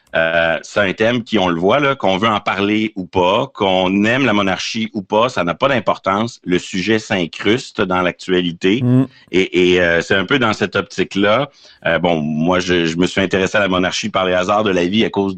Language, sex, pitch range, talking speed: French, male, 90-110 Hz, 225 wpm